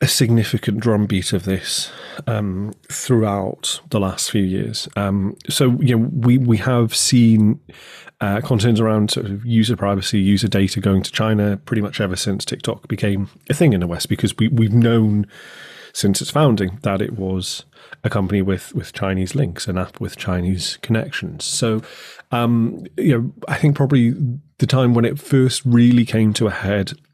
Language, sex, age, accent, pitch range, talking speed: English, male, 30-49, British, 100-120 Hz, 175 wpm